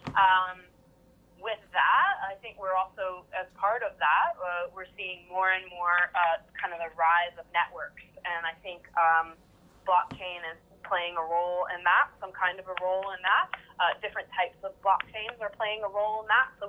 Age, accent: 20-39, American